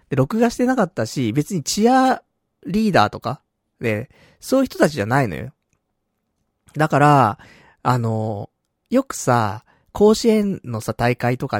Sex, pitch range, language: male, 110-175 Hz, Japanese